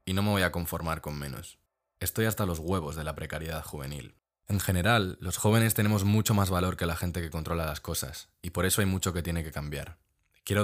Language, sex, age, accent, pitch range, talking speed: Spanish, male, 20-39, Spanish, 80-100 Hz, 230 wpm